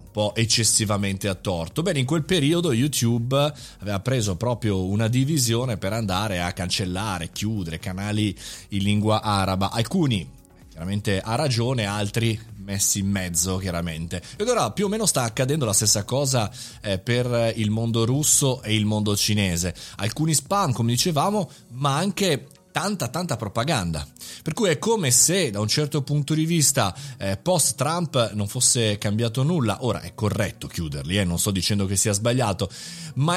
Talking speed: 160 wpm